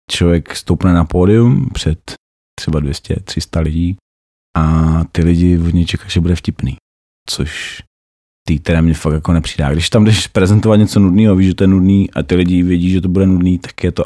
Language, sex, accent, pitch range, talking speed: Czech, male, native, 75-90 Hz, 190 wpm